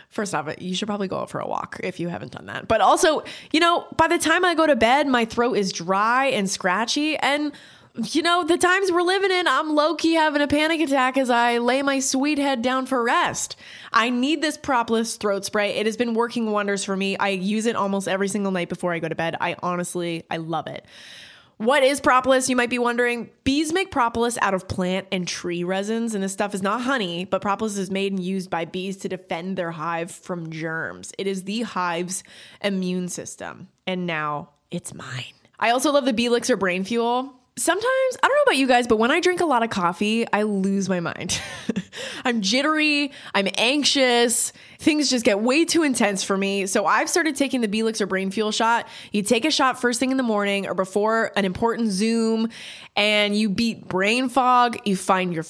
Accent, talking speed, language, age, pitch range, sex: American, 215 wpm, English, 20-39, 190-260 Hz, female